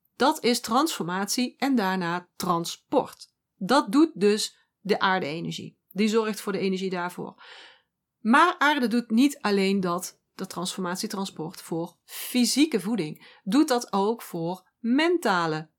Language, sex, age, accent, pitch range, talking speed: Dutch, female, 40-59, Dutch, 185-255 Hz, 125 wpm